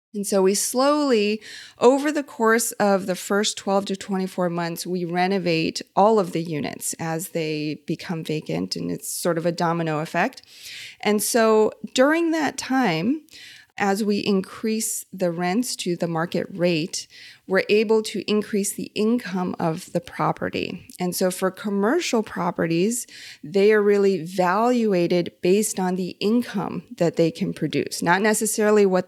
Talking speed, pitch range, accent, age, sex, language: 155 wpm, 175-215 Hz, American, 30-49, female, English